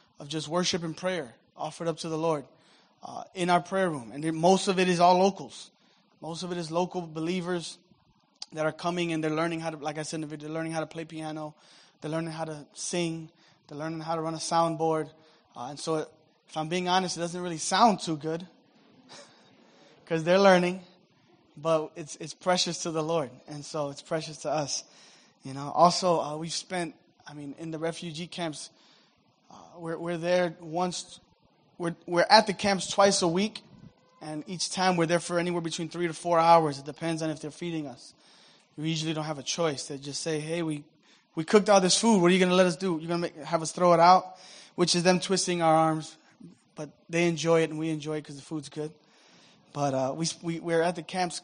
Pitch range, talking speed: 155-180 Hz, 220 wpm